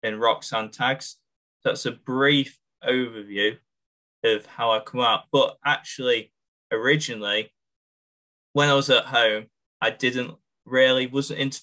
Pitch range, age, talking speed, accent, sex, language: 110-145 Hz, 10-29, 130 wpm, British, male, English